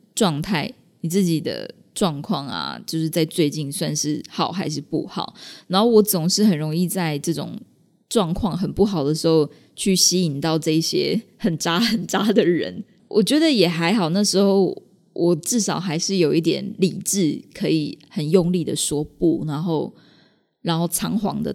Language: Chinese